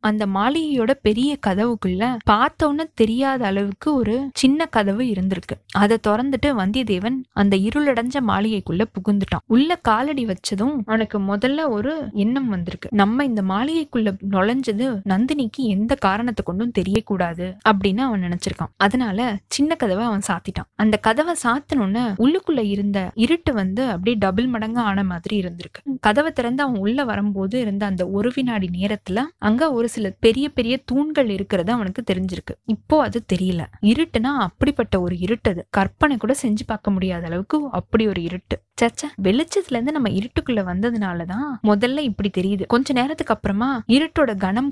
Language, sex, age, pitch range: Tamil, female, 20-39, 200-265 Hz